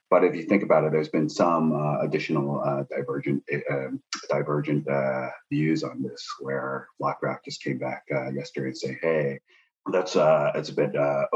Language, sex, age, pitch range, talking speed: English, male, 30-49, 70-80 Hz, 185 wpm